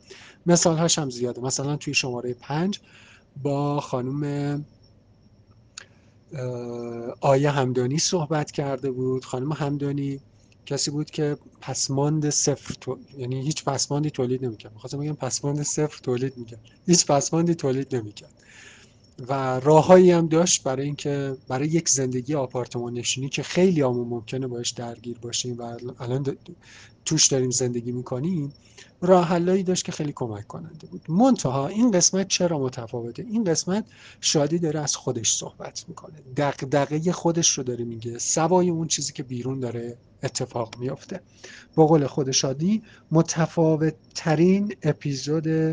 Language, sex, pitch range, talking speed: Arabic, male, 125-160 Hz, 135 wpm